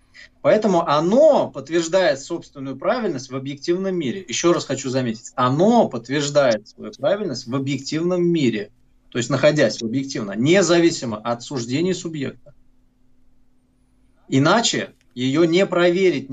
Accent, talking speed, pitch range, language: native, 115 wpm, 125-180 Hz, Russian